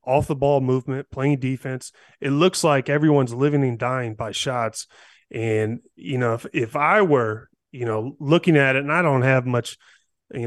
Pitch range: 120-145 Hz